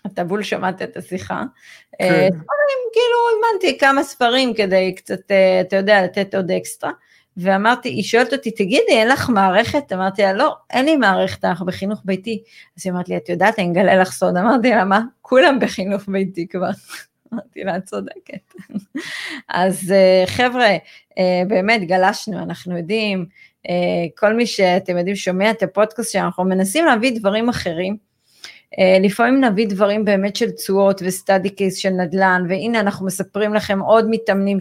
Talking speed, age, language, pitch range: 155 wpm, 30-49, Hebrew, 185-225 Hz